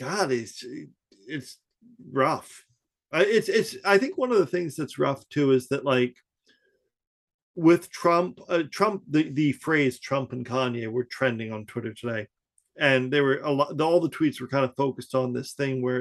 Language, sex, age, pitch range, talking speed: English, male, 40-59, 125-170 Hz, 185 wpm